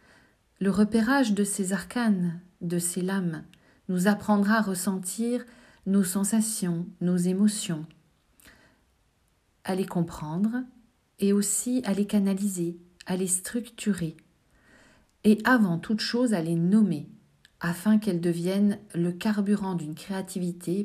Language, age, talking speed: French, 50-69, 120 wpm